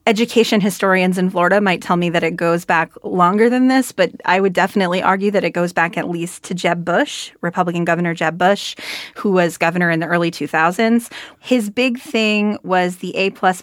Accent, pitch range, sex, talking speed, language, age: American, 175-210 Hz, female, 200 wpm, English, 30-49